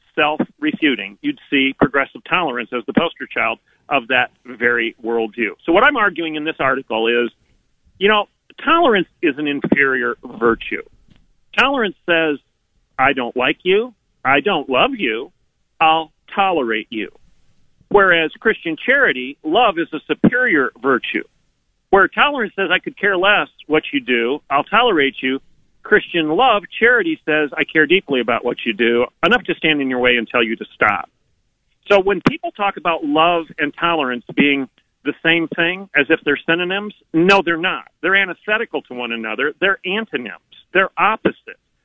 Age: 40-59